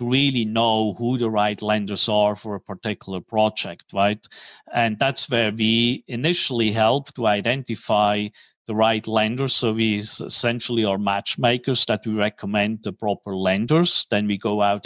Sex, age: male, 50-69